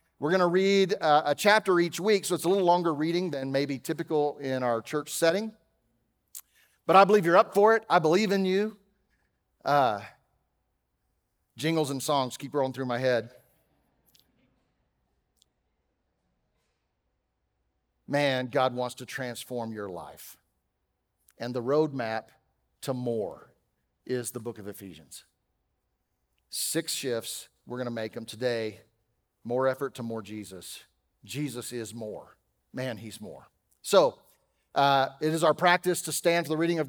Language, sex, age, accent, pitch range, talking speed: English, male, 50-69, American, 120-175 Hz, 145 wpm